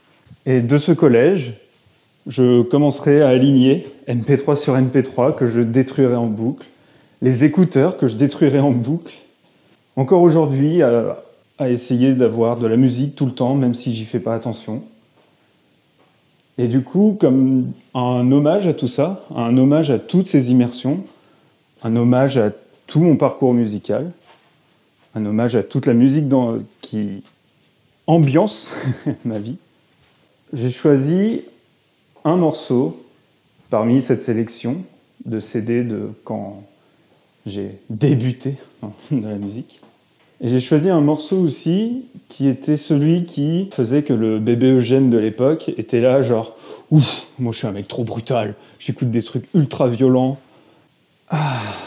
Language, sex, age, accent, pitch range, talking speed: French, male, 30-49, French, 120-150 Hz, 140 wpm